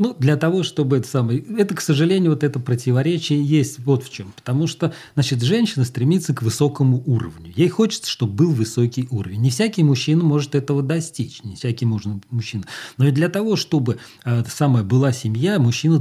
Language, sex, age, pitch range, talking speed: Russian, male, 40-59, 130-175 Hz, 185 wpm